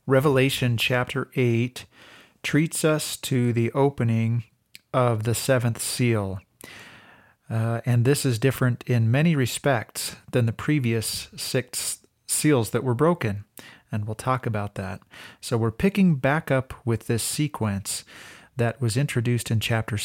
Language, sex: English, male